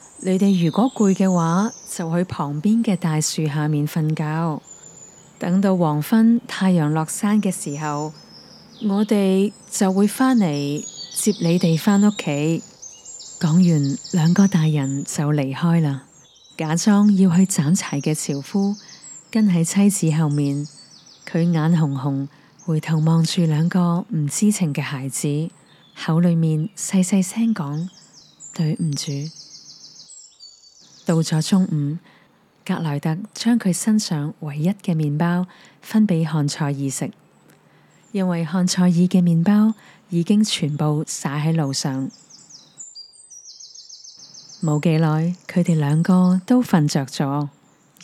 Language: Chinese